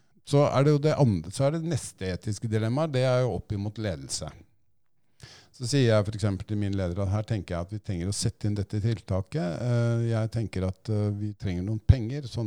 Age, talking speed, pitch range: 50-69, 205 wpm, 90-115 Hz